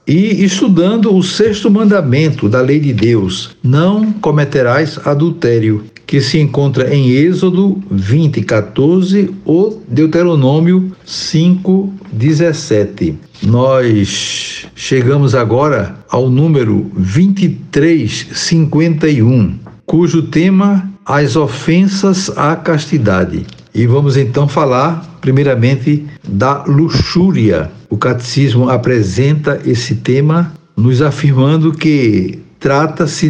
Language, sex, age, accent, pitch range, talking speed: Portuguese, male, 60-79, Brazilian, 120-170 Hz, 90 wpm